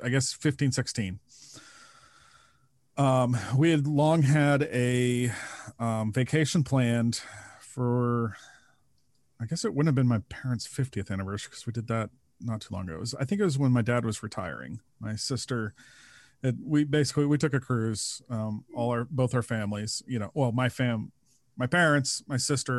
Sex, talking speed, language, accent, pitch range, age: male, 175 wpm, English, American, 115-140 Hz, 40-59